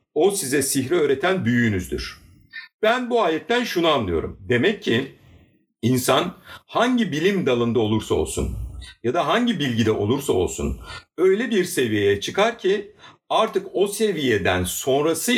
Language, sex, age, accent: Turkish, male, 60-79, native